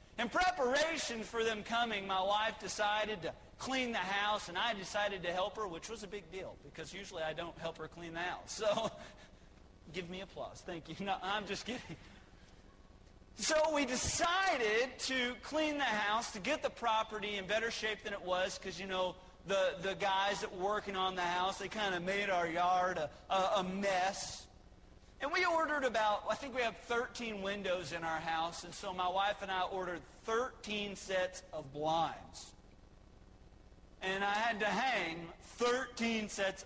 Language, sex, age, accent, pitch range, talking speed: English, male, 40-59, American, 175-220 Hz, 185 wpm